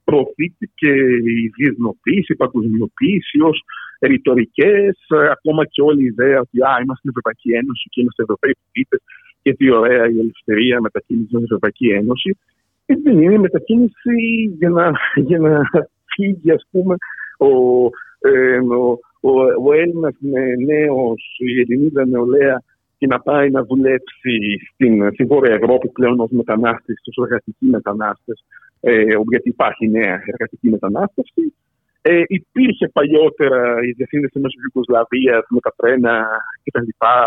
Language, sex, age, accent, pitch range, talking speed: Greek, male, 50-69, Italian, 115-165 Hz, 125 wpm